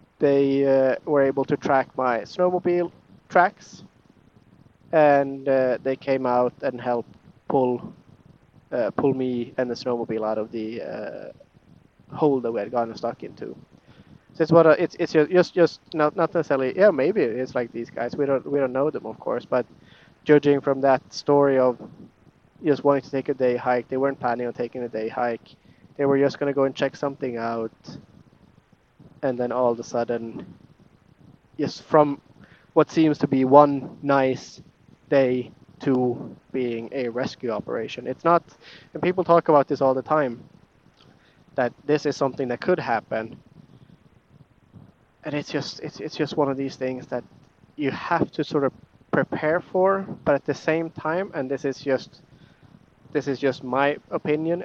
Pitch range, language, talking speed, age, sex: 125-150 Hz, English, 175 wpm, 20-39, male